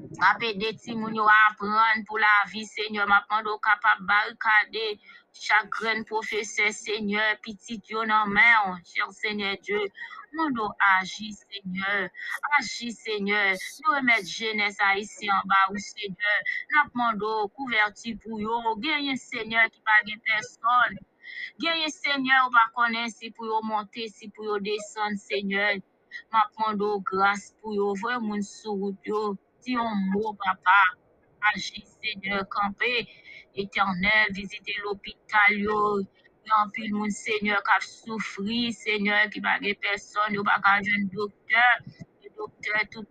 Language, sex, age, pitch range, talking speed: English, female, 20-39, 200-225 Hz, 140 wpm